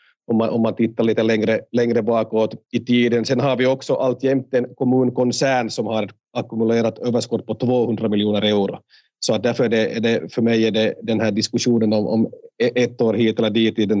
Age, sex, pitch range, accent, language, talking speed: 40-59, male, 110-125 Hz, Finnish, Swedish, 200 wpm